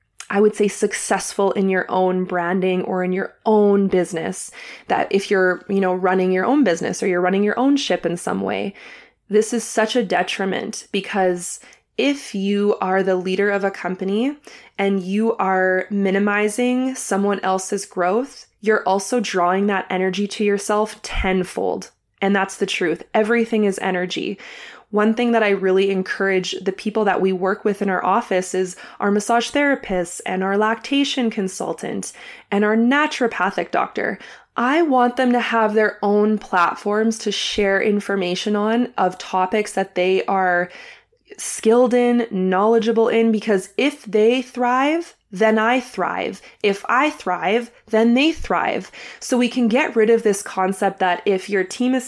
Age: 20-39